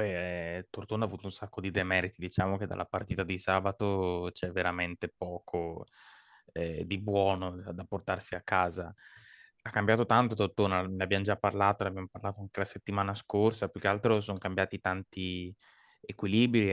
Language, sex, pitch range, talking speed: Italian, male, 90-100 Hz, 165 wpm